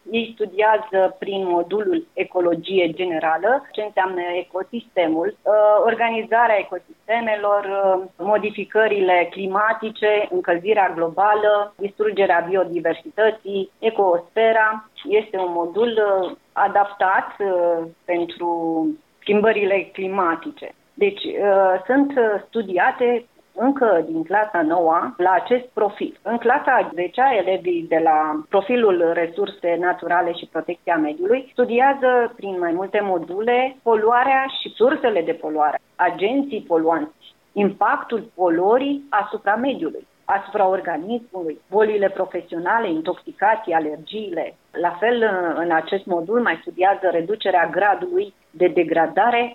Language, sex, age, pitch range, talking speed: Romanian, female, 30-49, 175-230 Hz, 95 wpm